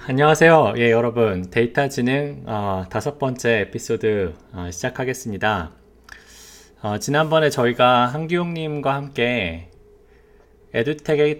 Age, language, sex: 20-39, Korean, male